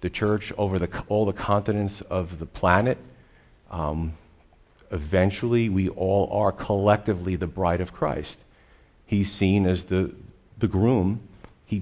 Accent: American